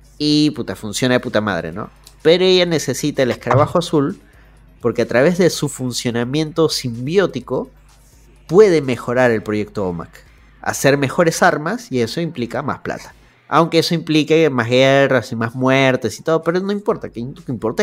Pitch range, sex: 120-155 Hz, male